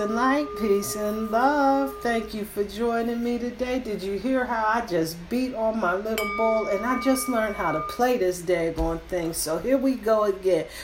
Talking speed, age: 205 wpm, 40-59